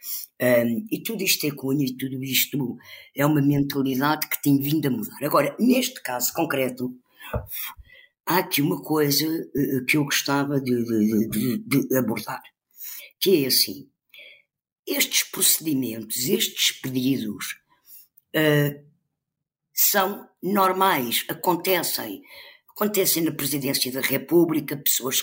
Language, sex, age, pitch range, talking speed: Portuguese, female, 50-69, 130-165 Hz, 105 wpm